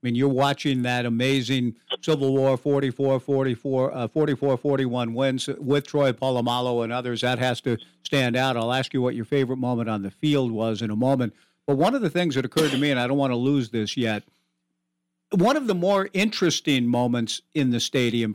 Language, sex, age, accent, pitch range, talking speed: English, male, 60-79, American, 125-180 Hz, 200 wpm